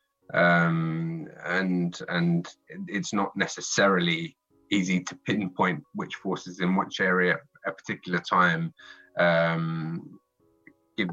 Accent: British